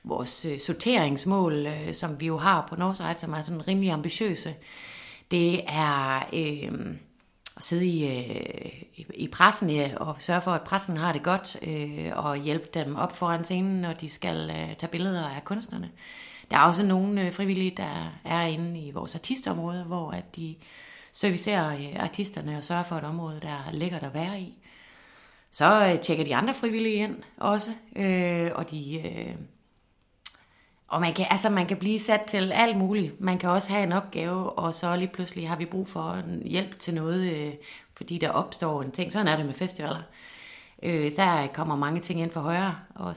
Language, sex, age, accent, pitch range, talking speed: Danish, female, 30-49, native, 155-185 Hz, 190 wpm